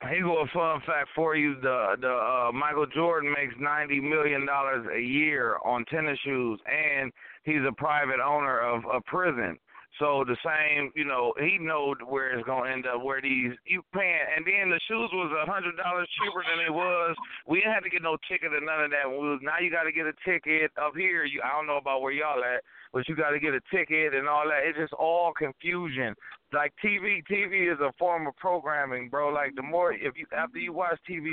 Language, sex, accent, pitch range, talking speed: English, male, American, 140-170 Hz, 225 wpm